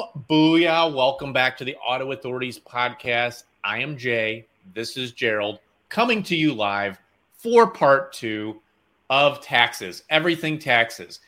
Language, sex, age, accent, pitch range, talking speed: English, male, 30-49, American, 115-160 Hz, 135 wpm